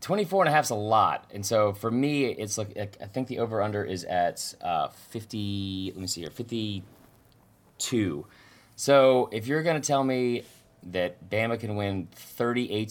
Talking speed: 175 wpm